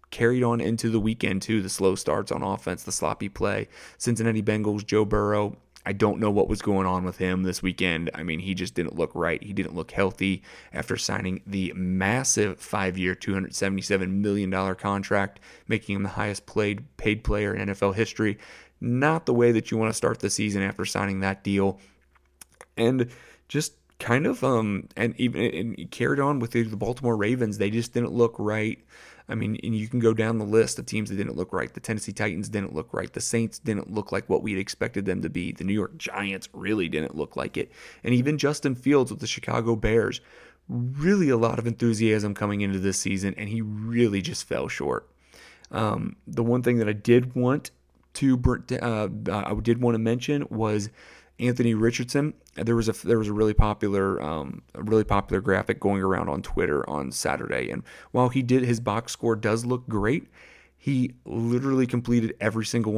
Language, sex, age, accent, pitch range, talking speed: English, male, 30-49, American, 100-120 Hz, 195 wpm